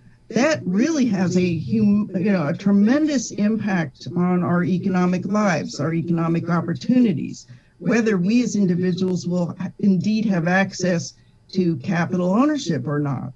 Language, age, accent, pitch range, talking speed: English, 50-69, American, 160-200 Hz, 135 wpm